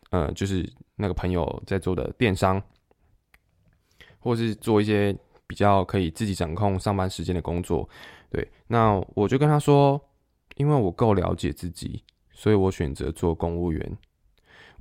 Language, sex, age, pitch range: Chinese, male, 20-39, 90-115 Hz